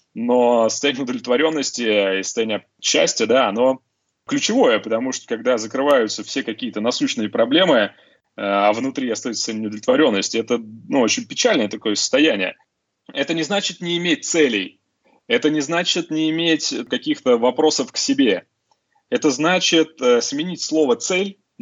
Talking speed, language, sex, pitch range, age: 135 wpm, Russian, male, 125-175 Hz, 20-39